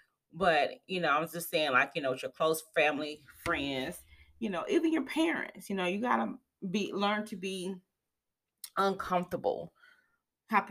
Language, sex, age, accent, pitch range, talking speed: English, female, 30-49, American, 150-195 Hz, 170 wpm